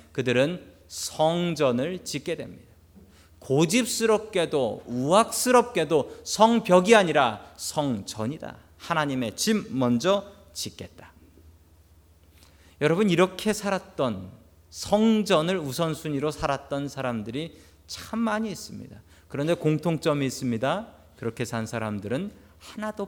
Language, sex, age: Korean, male, 40-59